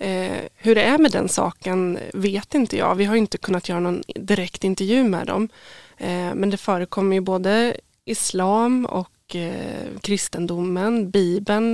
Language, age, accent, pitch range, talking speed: Swedish, 20-39, native, 185-215 Hz, 145 wpm